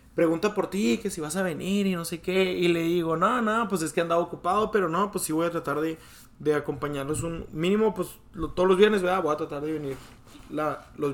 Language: Spanish